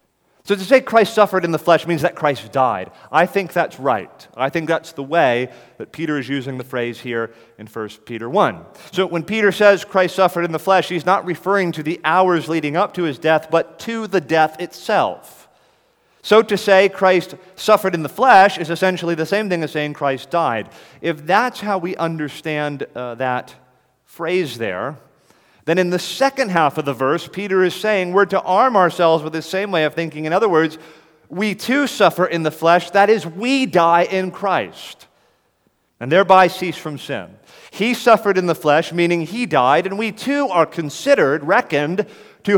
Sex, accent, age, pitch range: male, American, 30-49, 155-195 Hz